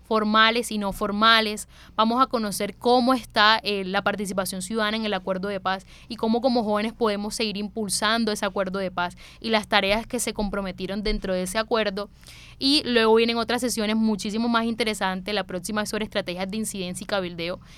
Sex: female